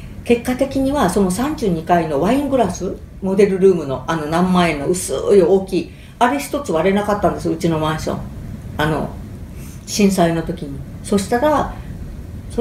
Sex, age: female, 50-69